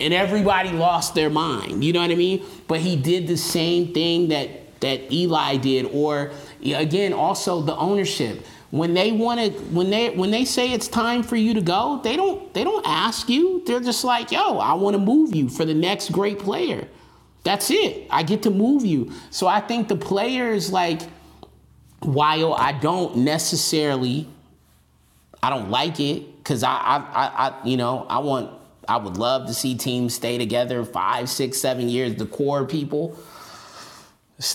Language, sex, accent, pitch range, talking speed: English, male, American, 130-190 Hz, 180 wpm